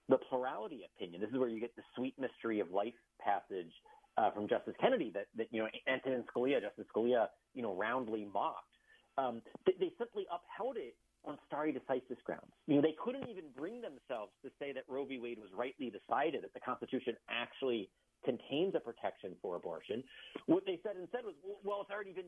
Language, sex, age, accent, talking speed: English, male, 40-59, American, 200 wpm